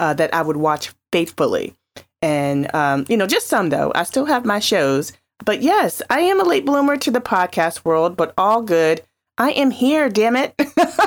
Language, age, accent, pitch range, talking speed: English, 30-49, American, 165-250 Hz, 200 wpm